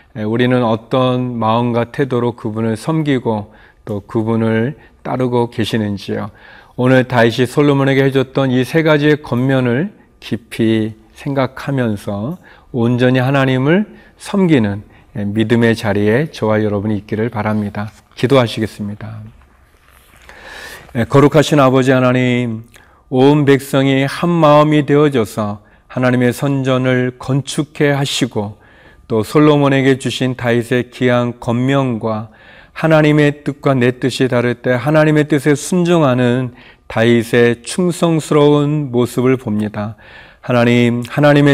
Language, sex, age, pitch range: Korean, male, 40-59, 115-140 Hz